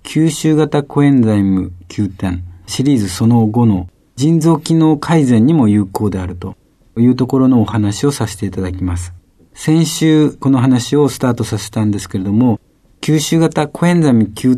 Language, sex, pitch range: Japanese, male, 100-145 Hz